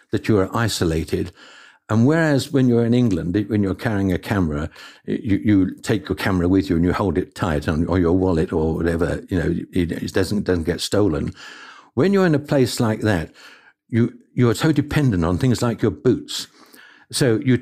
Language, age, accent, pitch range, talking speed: English, 60-79, British, 90-140 Hz, 190 wpm